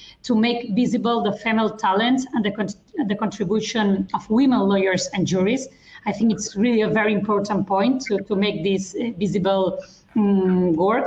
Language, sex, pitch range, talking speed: English, female, 200-245 Hz, 165 wpm